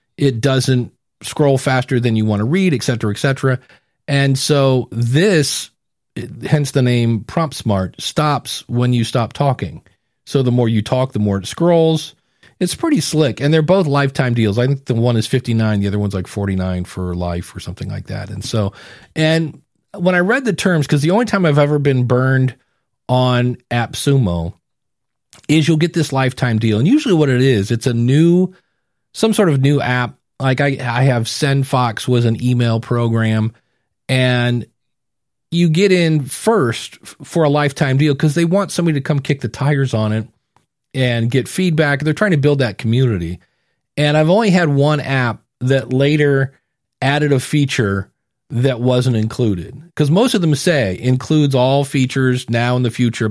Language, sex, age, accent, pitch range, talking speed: English, male, 40-59, American, 115-150 Hz, 180 wpm